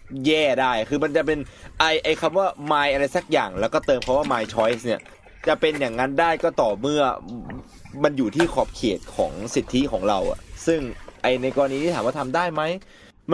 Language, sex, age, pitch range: Thai, male, 20-39, 115-160 Hz